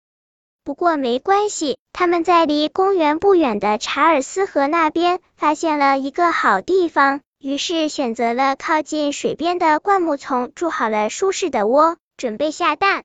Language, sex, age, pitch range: Chinese, male, 10-29, 280-360 Hz